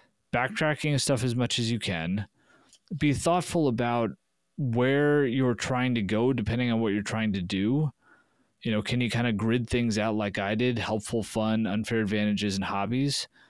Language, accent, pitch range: English, American, 110-140 Hz